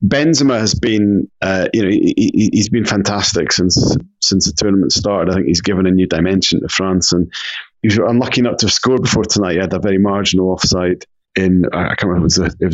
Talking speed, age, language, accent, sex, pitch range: 230 wpm, 30-49, English, British, male, 90-110 Hz